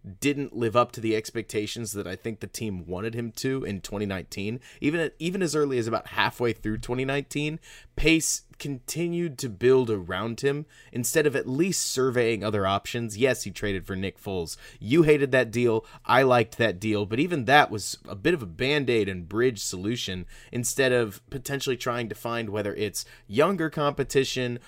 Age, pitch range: 30-49, 105-140 Hz